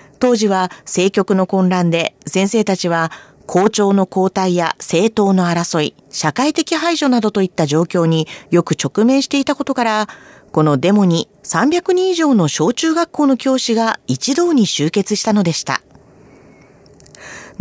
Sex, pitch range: female, 175-275 Hz